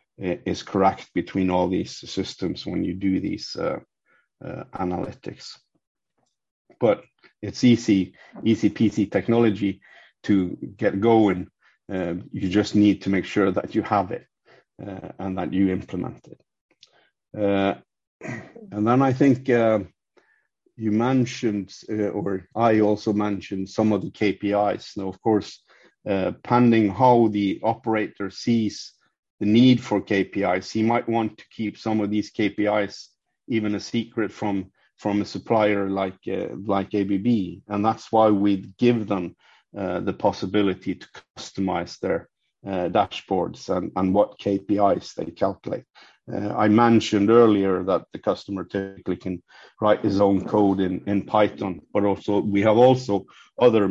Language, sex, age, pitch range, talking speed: English, male, 50-69, 95-110 Hz, 145 wpm